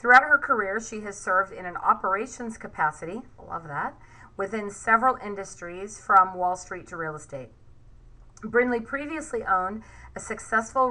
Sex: female